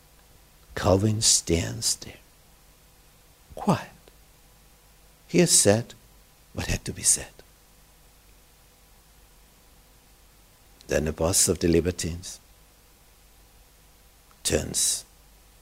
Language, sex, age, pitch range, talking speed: Romanian, male, 60-79, 85-120 Hz, 75 wpm